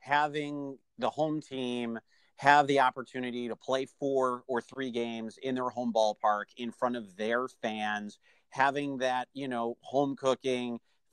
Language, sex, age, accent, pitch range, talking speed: English, male, 30-49, American, 130-190 Hz, 150 wpm